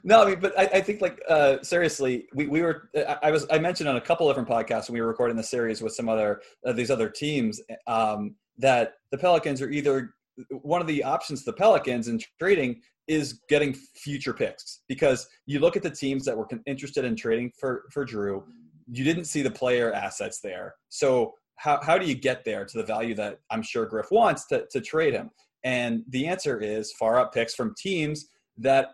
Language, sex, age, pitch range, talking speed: English, male, 20-39, 115-155 Hz, 215 wpm